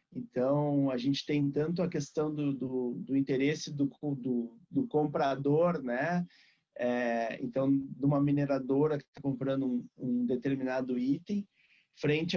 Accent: Brazilian